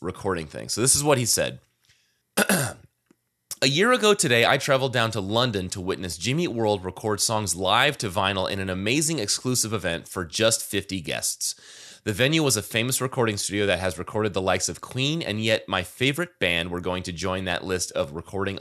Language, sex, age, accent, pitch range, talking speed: English, male, 30-49, American, 90-120 Hz, 200 wpm